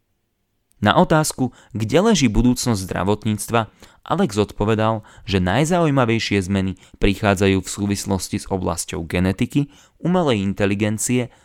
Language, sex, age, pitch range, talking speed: Slovak, male, 20-39, 100-120 Hz, 100 wpm